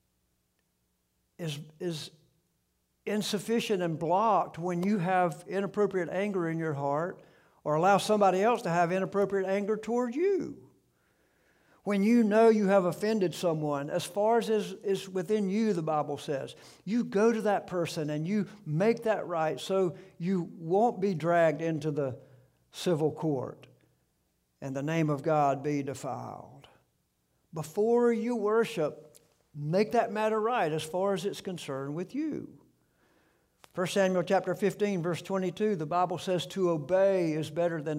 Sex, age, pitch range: male, 60-79, 135-195 Hz